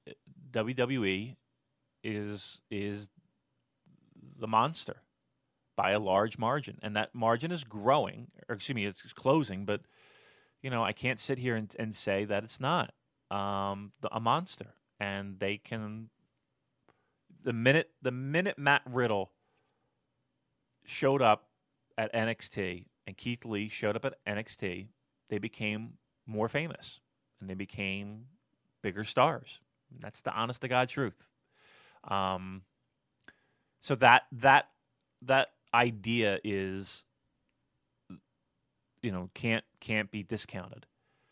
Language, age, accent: English, 30-49, American